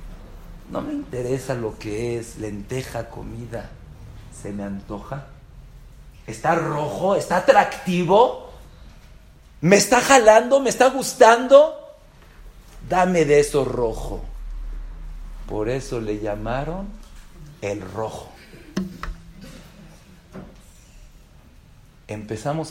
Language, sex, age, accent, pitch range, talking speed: English, male, 50-69, Mexican, 105-165 Hz, 85 wpm